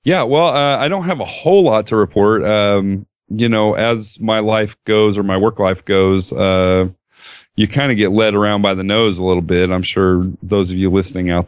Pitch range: 95-110 Hz